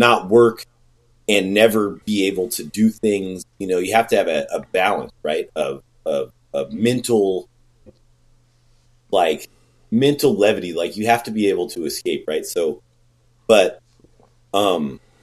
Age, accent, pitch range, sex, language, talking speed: 30-49, American, 85-120 Hz, male, English, 155 wpm